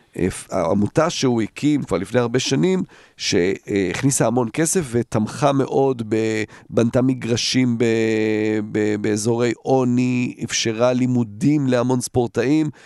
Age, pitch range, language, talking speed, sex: 40-59, 110-140 Hz, Hebrew, 95 wpm, male